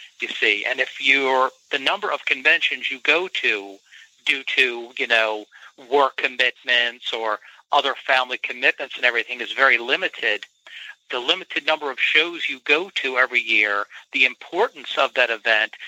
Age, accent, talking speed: 50-69, American, 160 wpm